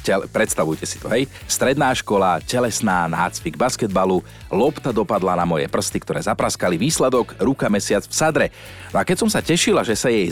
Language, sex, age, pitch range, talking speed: Slovak, male, 40-59, 105-135 Hz, 175 wpm